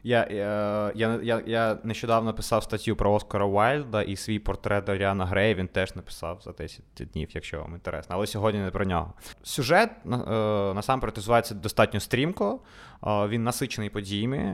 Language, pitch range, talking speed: Ukrainian, 105-125 Hz, 150 wpm